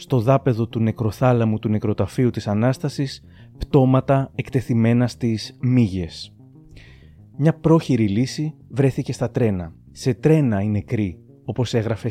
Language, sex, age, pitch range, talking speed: Greek, male, 30-49, 110-135 Hz, 120 wpm